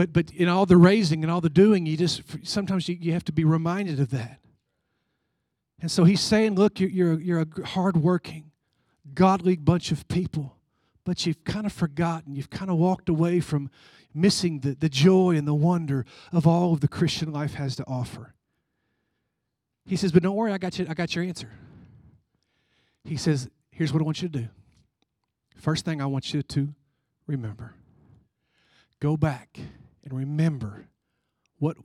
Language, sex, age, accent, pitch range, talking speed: English, male, 50-69, American, 150-190 Hz, 175 wpm